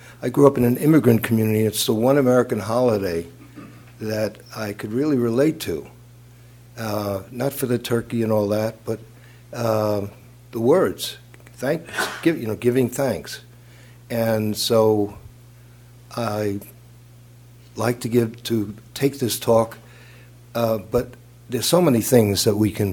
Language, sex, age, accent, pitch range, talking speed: English, male, 60-79, American, 105-120 Hz, 145 wpm